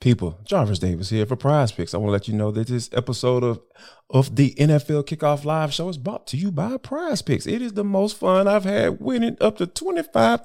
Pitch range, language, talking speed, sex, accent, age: 125-200 Hz, English, 240 wpm, male, American, 20-39